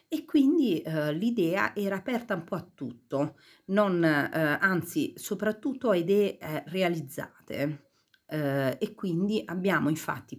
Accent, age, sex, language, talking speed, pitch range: native, 40-59, female, Italian, 135 wpm, 155-215 Hz